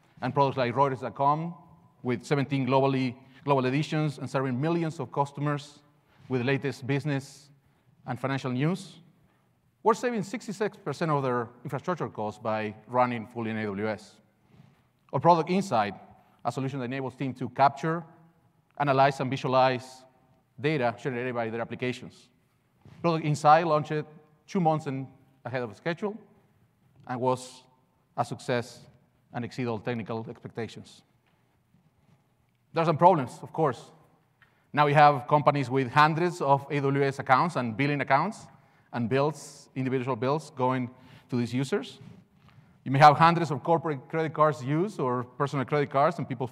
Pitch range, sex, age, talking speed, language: 125-155 Hz, male, 30-49, 140 wpm, English